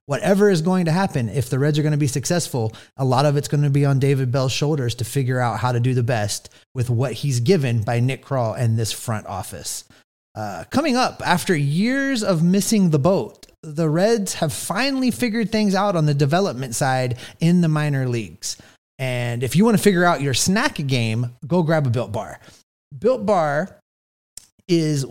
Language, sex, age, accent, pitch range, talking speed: English, male, 30-49, American, 120-170 Hz, 205 wpm